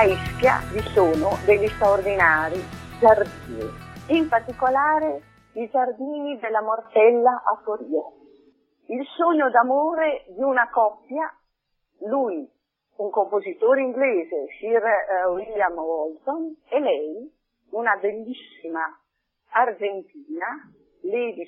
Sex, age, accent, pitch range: female, 40-59, native, 200-280 Hz